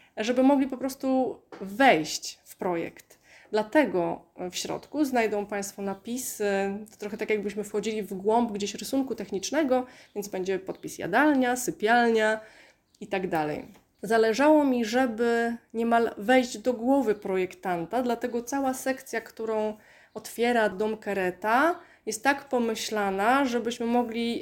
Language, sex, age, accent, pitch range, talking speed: Polish, female, 20-39, native, 210-260 Hz, 125 wpm